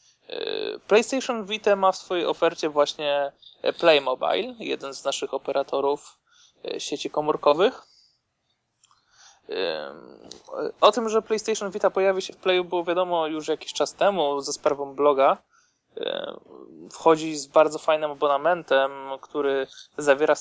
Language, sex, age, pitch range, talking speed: Polish, male, 20-39, 140-205 Hz, 115 wpm